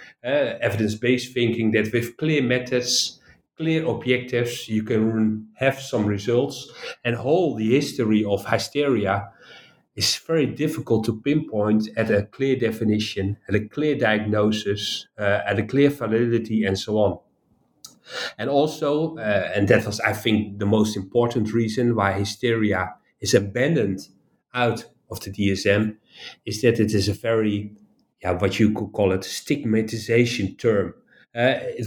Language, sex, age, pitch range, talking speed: English, male, 40-59, 105-130 Hz, 145 wpm